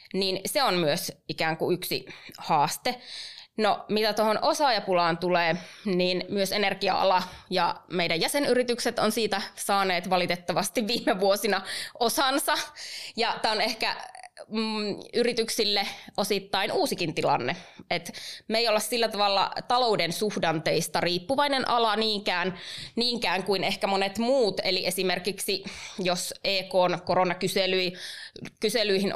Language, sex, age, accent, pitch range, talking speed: Finnish, female, 20-39, native, 180-225 Hz, 115 wpm